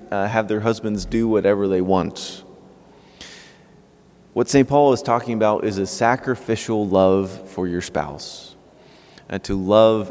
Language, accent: English, American